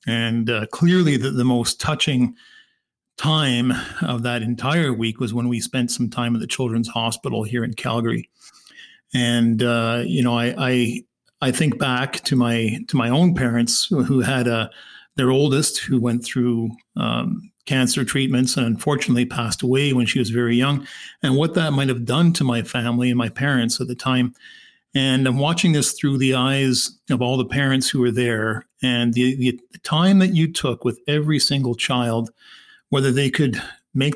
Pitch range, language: 120-145 Hz, English